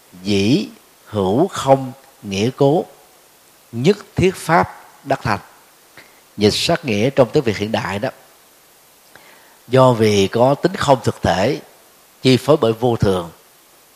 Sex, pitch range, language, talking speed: male, 100-135 Hz, Vietnamese, 135 wpm